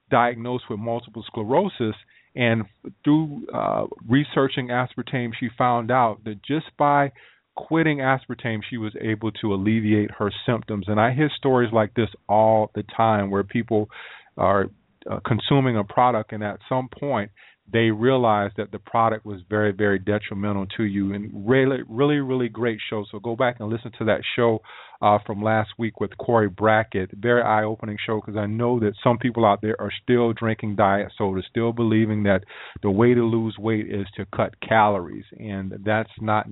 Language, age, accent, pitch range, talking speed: English, 40-59, American, 105-120 Hz, 175 wpm